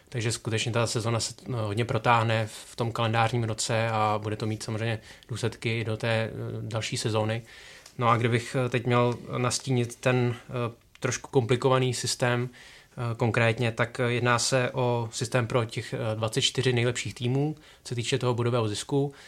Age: 20-39